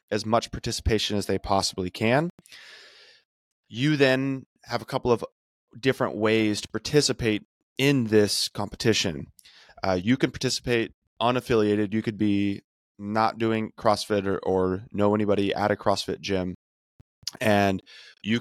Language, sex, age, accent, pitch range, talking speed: English, male, 20-39, American, 100-115 Hz, 135 wpm